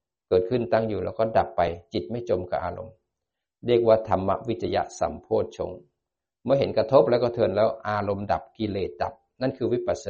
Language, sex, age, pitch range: Thai, male, 60-79, 95-130 Hz